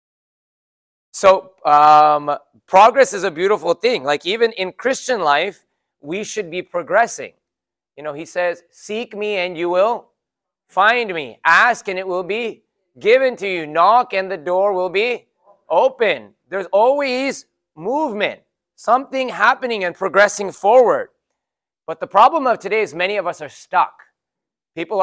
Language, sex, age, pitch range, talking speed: English, male, 30-49, 145-205 Hz, 150 wpm